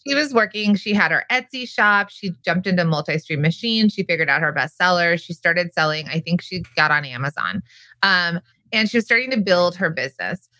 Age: 20-39